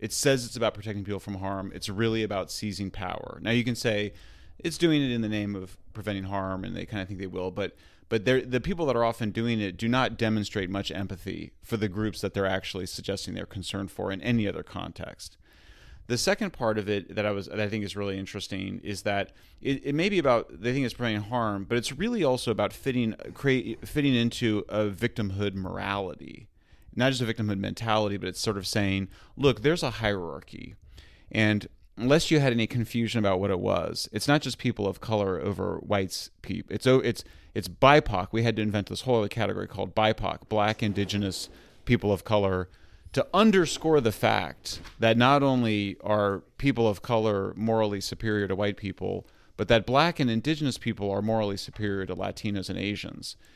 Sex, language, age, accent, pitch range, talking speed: male, English, 30-49, American, 95-120 Hz, 200 wpm